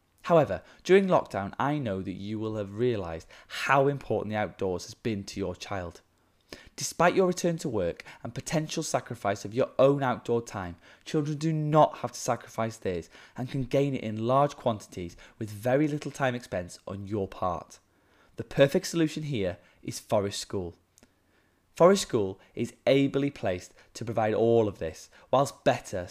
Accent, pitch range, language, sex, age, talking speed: British, 100-145 Hz, English, male, 20-39, 170 wpm